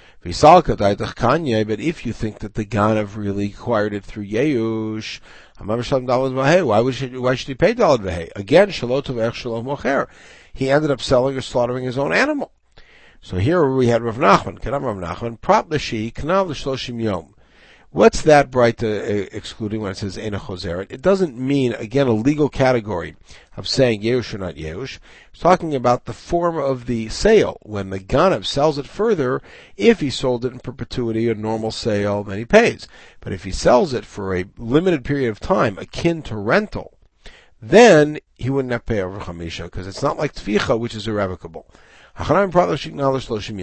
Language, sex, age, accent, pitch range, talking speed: English, male, 60-79, American, 105-140 Hz, 170 wpm